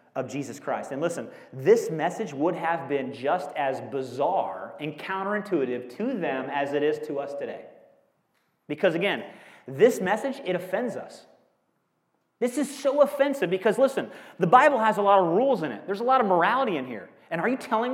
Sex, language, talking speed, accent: male, English, 185 wpm, American